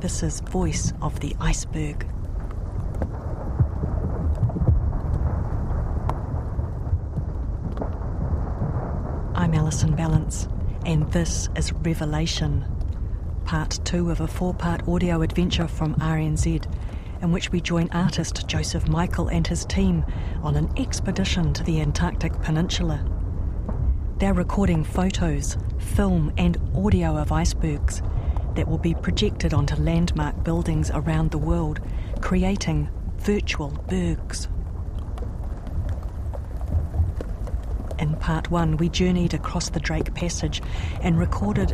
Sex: female